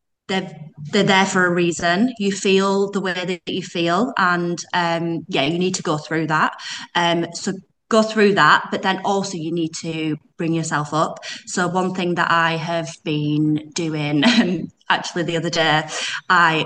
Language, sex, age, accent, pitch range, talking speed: English, female, 20-39, British, 160-195 Hz, 180 wpm